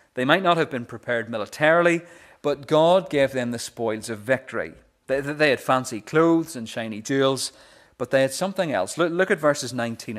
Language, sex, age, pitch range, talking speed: English, male, 30-49, 115-160 Hz, 195 wpm